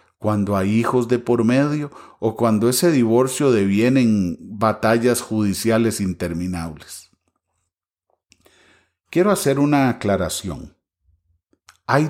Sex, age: male, 40-59